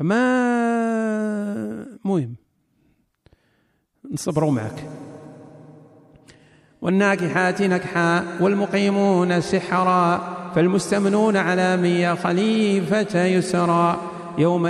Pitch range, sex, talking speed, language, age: 170-195 Hz, male, 55 wpm, Arabic, 40-59